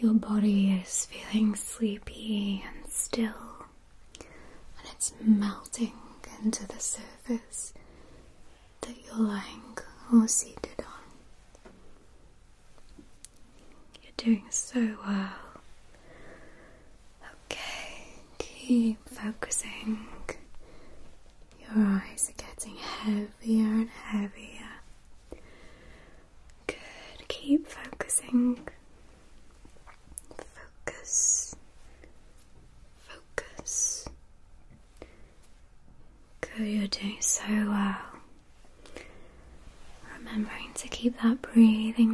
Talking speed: 65 wpm